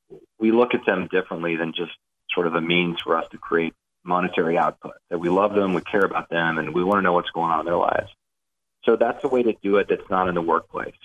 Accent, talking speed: American, 260 wpm